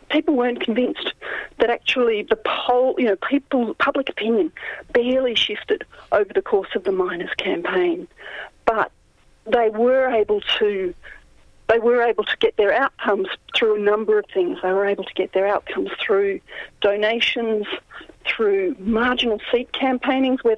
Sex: female